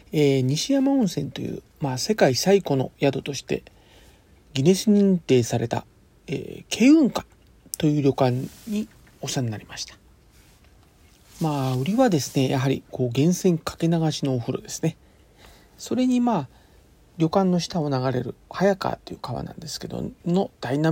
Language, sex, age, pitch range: Japanese, male, 40-59, 130-175 Hz